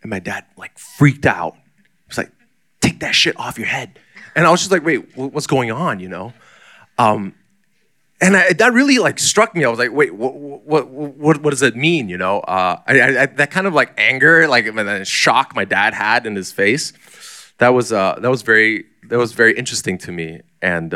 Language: English